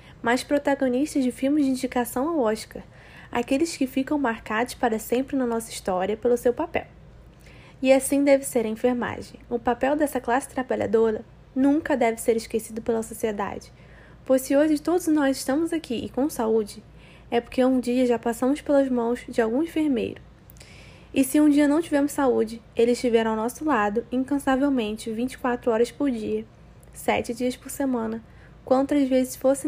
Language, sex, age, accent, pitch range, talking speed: Portuguese, female, 10-29, Brazilian, 235-280 Hz, 165 wpm